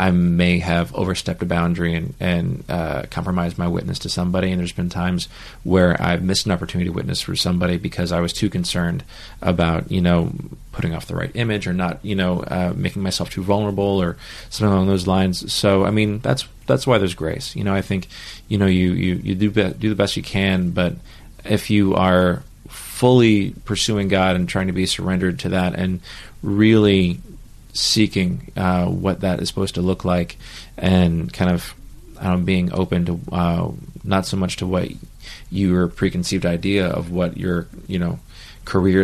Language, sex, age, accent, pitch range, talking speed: English, male, 30-49, American, 85-95 Hz, 190 wpm